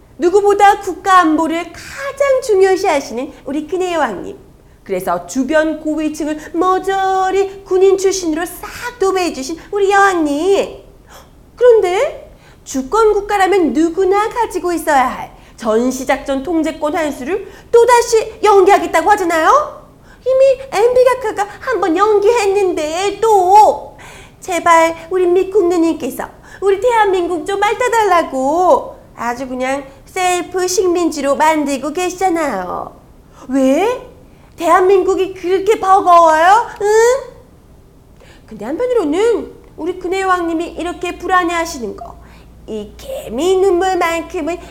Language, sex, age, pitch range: Korean, female, 30-49, 310-395 Hz